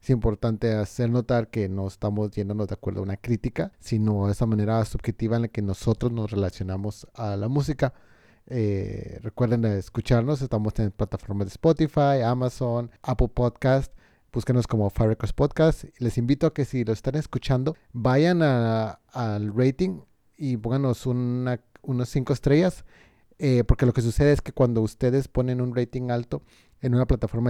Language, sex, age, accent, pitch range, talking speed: Spanish, male, 30-49, Mexican, 110-130 Hz, 165 wpm